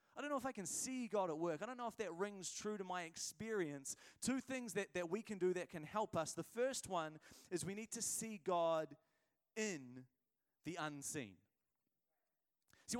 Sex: male